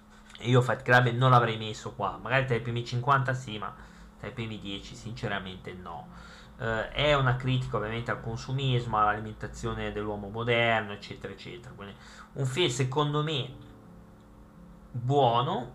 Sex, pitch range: male, 110-140 Hz